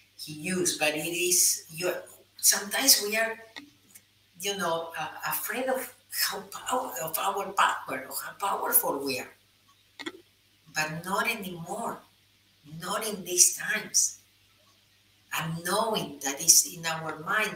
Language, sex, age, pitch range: English, female, 50-69, 140-180 Hz